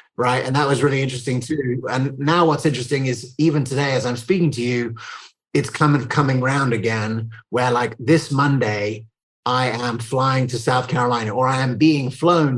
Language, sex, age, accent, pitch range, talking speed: English, male, 30-49, British, 120-145 Hz, 185 wpm